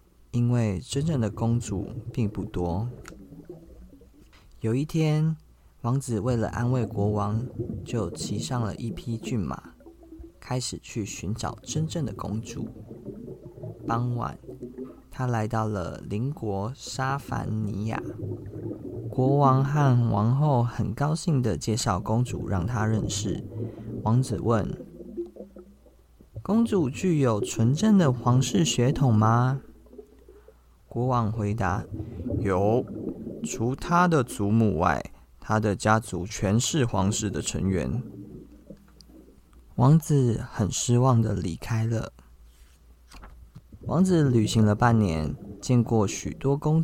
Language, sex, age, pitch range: Chinese, male, 20-39, 105-130 Hz